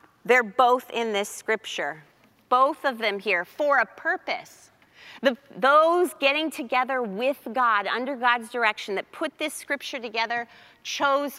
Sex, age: female, 30-49